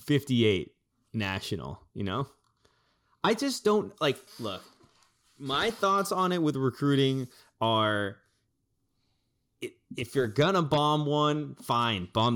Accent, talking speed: American, 110 wpm